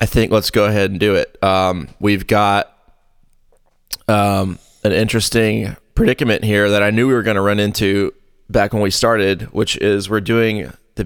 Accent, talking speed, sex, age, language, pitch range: American, 185 wpm, male, 20-39, English, 100-115 Hz